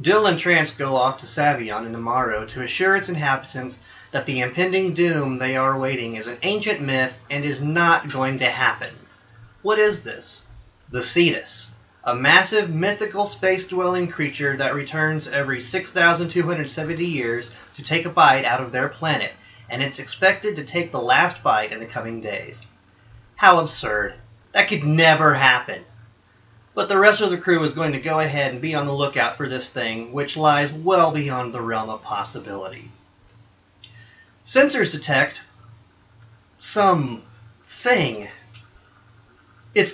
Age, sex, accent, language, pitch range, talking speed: 30-49, male, American, English, 115-170 Hz, 155 wpm